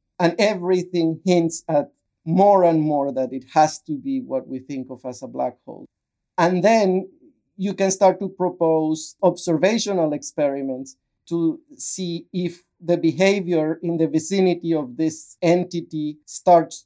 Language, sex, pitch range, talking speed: English, male, 155-180 Hz, 145 wpm